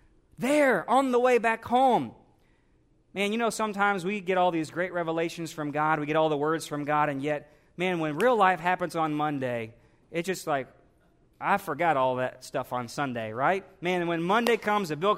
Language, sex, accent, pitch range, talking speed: English, male, American, 150-195 Hz, 200 wpm